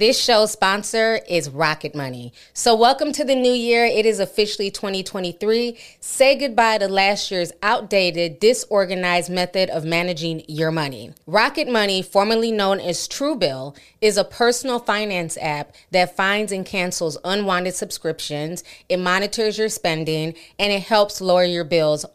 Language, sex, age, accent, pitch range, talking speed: English, female, 30-49, American, 175-220 Hz, 150 wpm